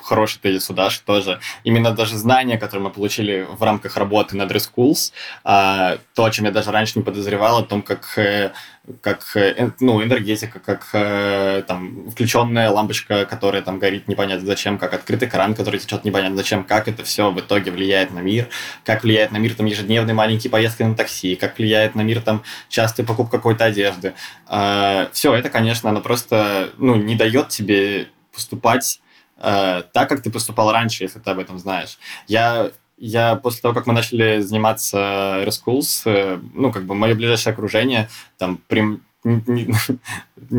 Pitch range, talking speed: 100-115 Hz, 165 wpm